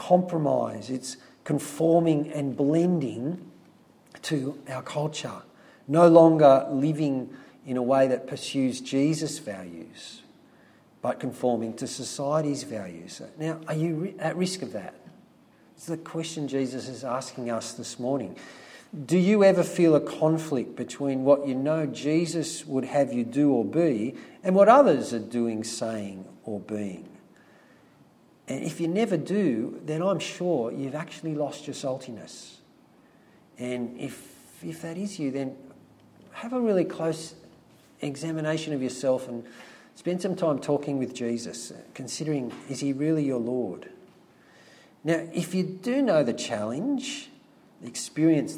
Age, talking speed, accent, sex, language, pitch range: 50-69, 140 wpm, Australian, male, English, 130-165 Hz